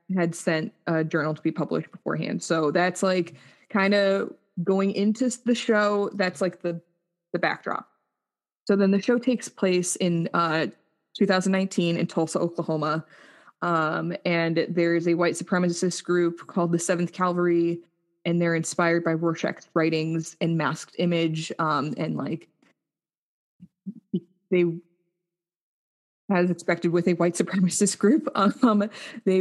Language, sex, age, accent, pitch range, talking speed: English, female, 20-39, American, 165-190 Hz, 135 wpm